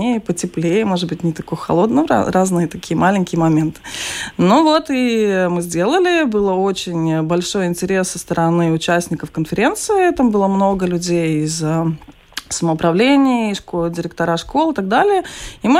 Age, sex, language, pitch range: 20-39, female, Russian, 180-250 Hz